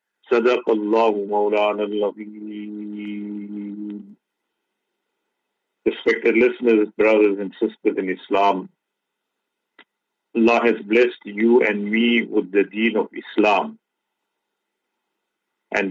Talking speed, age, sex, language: 85 wpm, 50-69, male, English